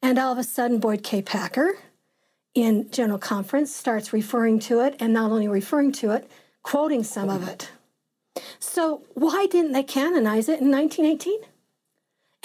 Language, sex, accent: English, female, American